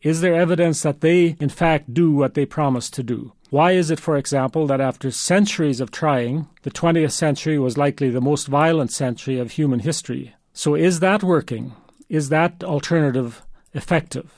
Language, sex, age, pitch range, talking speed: English, male, 40-59, 135-170 Hz, 180 wpm